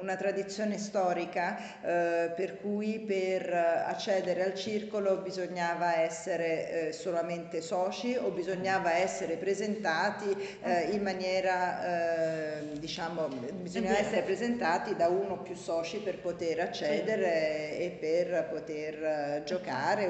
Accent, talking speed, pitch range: native, 115 wpm, 165-195 Hz